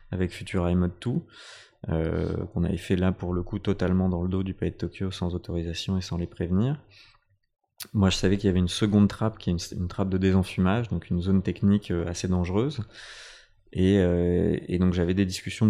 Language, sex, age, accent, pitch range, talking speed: French, male, 20-39, French, 90-100 Hz, 210 wpm